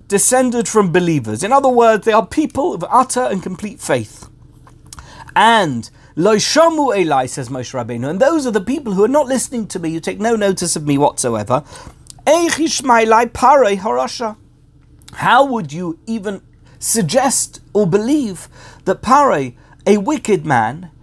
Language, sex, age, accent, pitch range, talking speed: English, male, 50-69, British, 140-230 Hz, 155 wpm